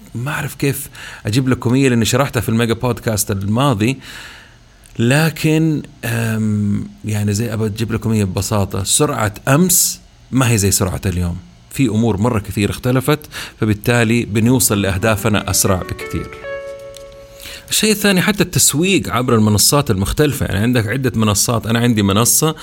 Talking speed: 130 wpm